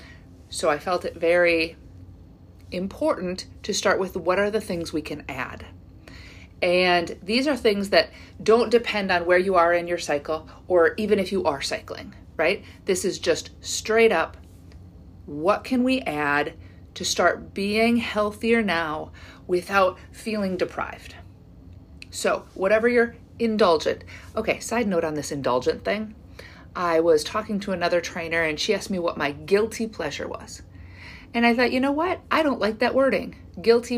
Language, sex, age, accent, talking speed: English, female, 40-59, American, 160 wpm